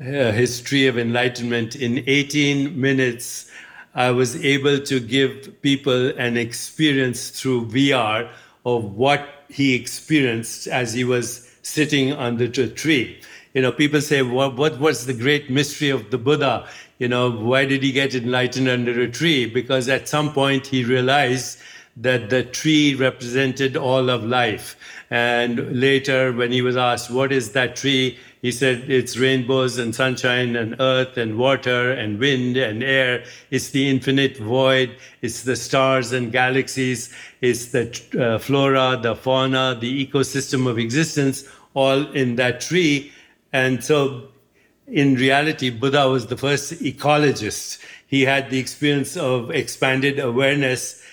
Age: 60-79